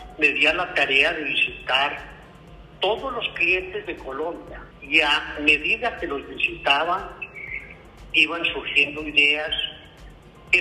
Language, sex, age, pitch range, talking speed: Spanish, male, 50-69, 145-185 Hz, 120 wpm